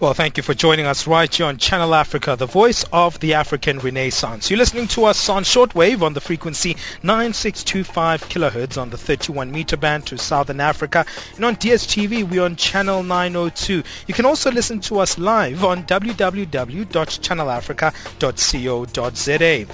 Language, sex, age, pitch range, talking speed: English, male, 30-49, 145-200 Hz, 155 wpm